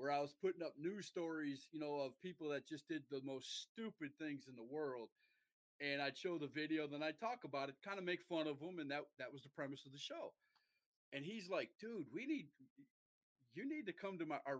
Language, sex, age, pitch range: English, male, 30-49, 140-180 Hz